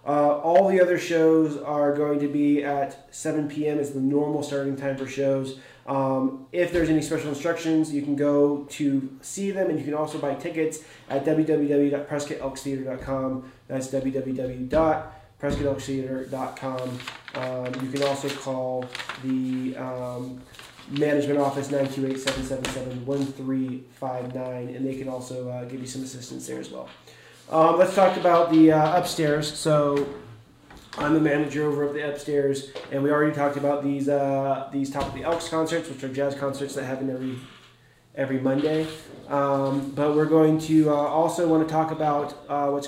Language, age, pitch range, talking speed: English, 20-39, 130-150 Hz, 155 wpm